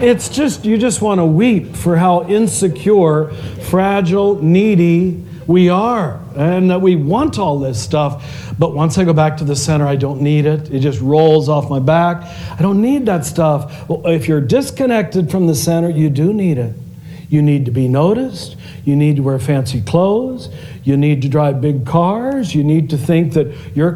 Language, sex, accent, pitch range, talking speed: English, male, American, 145-180 Hz, 195 wpm